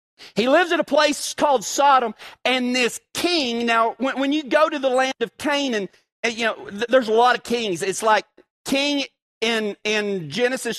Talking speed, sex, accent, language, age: 185 wpm, male, American, English, 40-59